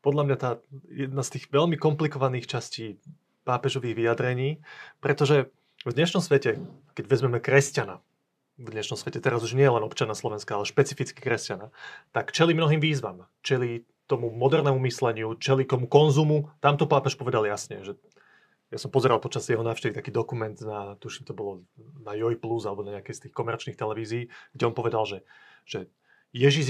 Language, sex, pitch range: Slovak, male, 120-145 Hz